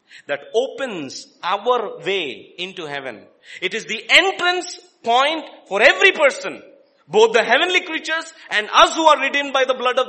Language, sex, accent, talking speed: English, male, Indian, 160 wpm